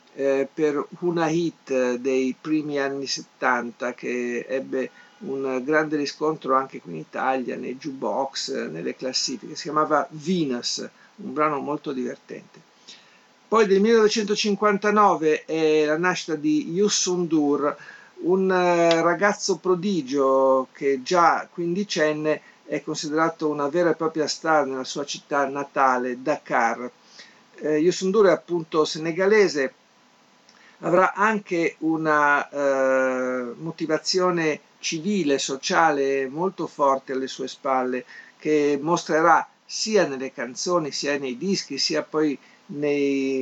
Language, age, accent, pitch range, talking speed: Italian, 50-69, native, 135-170 Hz, 110 wpm